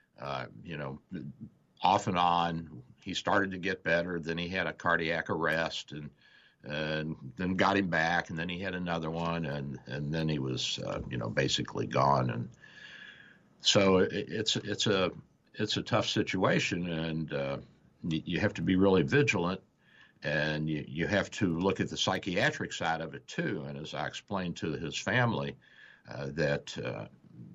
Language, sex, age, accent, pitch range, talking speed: English, male, 60-79, American, 70-90 Hz, 175 wpm